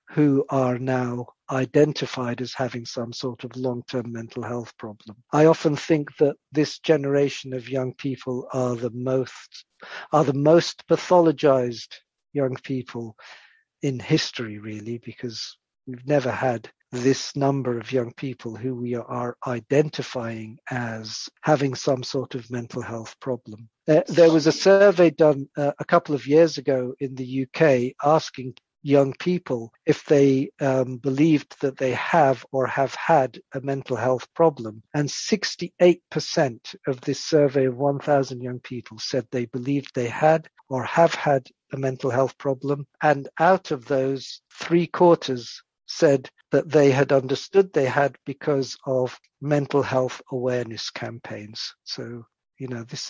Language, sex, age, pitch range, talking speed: English, male, 50-69, 125-145 Hz, 150 wpm